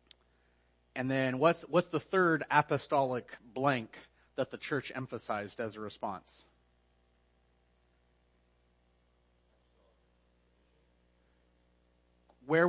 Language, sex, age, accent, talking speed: English, male, 30-49, American, 75 wpm